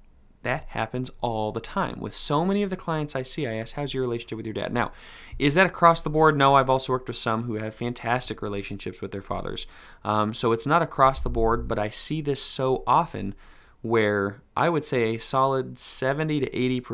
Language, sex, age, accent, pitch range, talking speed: English, male, 20-39, American, 100-130 Hz, 215 wpm